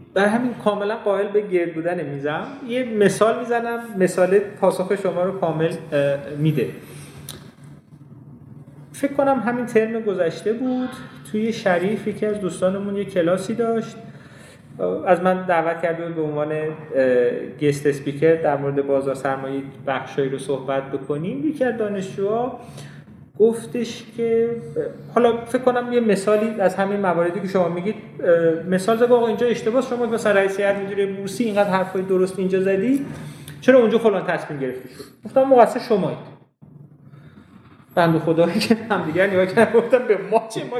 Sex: male